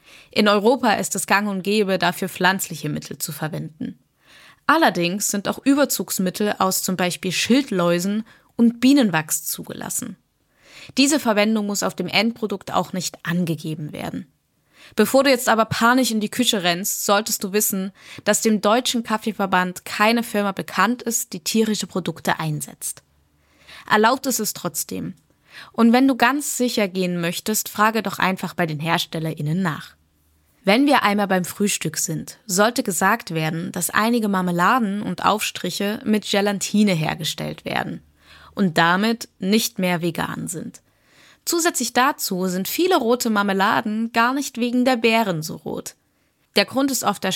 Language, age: German, 20-39